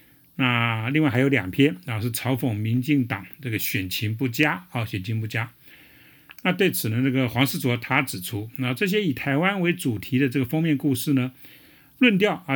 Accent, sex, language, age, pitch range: American, male, Chinese, 50-69, 115-150 Hz